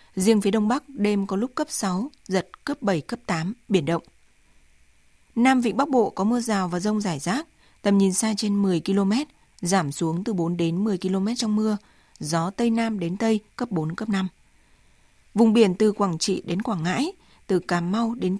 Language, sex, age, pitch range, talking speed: Vietnamese, female, 20-39, 180-225 Hz, 205 wpm